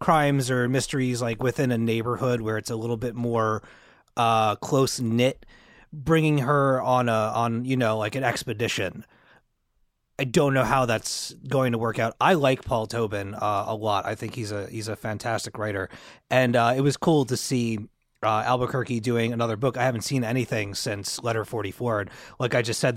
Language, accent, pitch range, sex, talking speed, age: English, American, 115-140 Hz, male, 195 wpm, 30-49